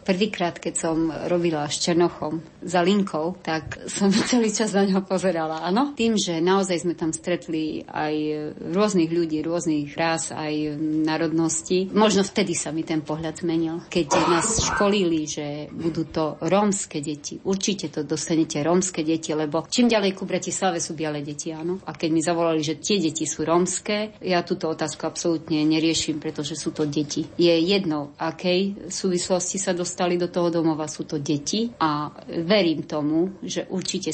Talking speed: 165 wpm